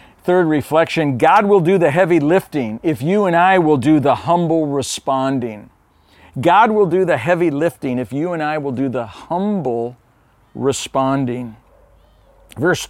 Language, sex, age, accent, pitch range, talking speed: English, male, 50-69, American, 125-180 Hz, 155 wpm